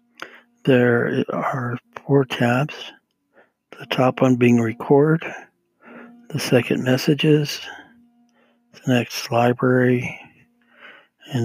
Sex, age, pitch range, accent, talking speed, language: male, 60-79, 120-140 Hz, American, 85 wpm, English